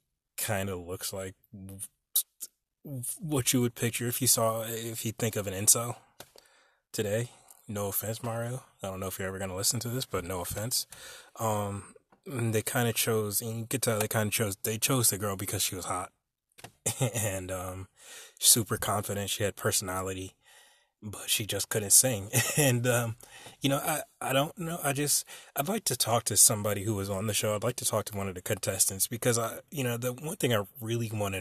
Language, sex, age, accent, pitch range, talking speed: English, male, 20-39, American, 95-120 Hz, 200 wpm